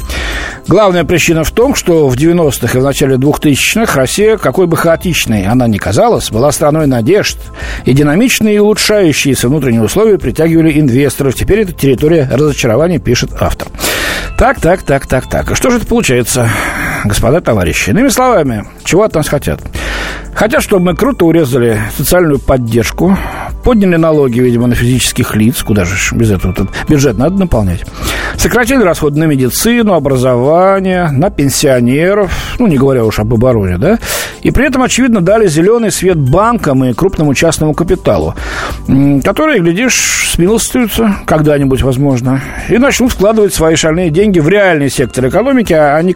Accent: native